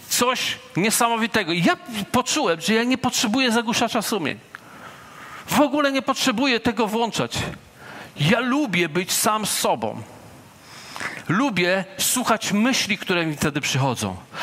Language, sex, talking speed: Polish, male, 120 wpm